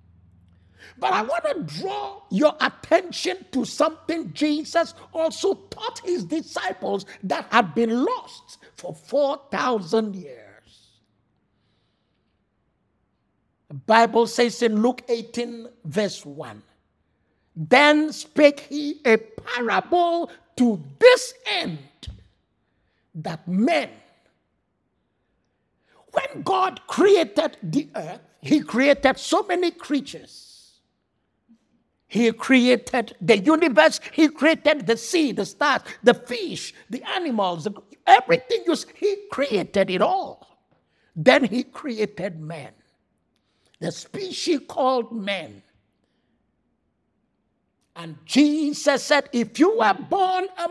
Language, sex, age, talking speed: English, male, 50-69, 100 wpm